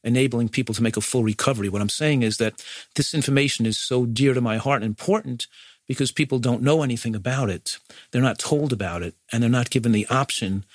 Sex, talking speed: male, 225 wpm